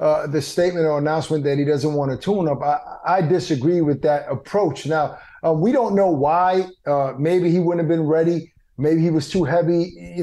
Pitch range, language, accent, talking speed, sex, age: 150-185 Hz, English, American, 215 wpm, male, 30-49